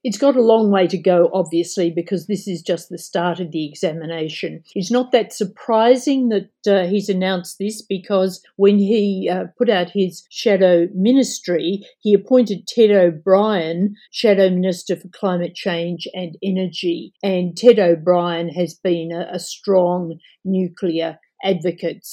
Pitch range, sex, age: 175-205 Hz, female, 50-69